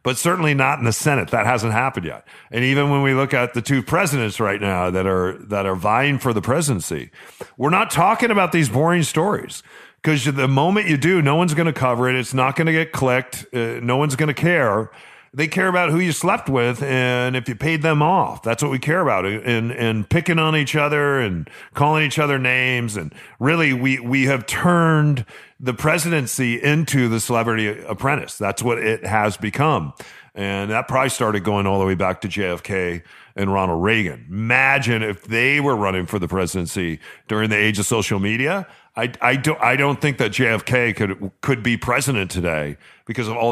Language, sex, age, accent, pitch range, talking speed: English, male, 40-59, American, 105-145 Hz, 205 wpm